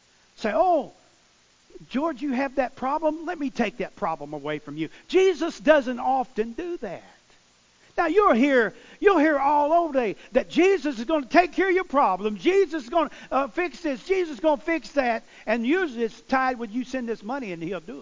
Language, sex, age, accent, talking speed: English, male, 50-69, American, 215 wpm